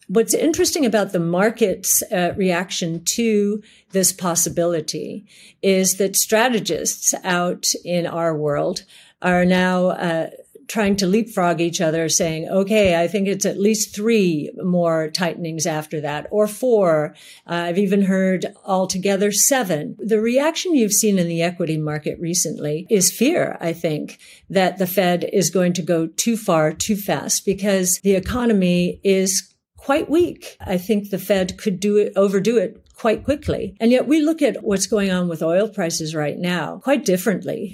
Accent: American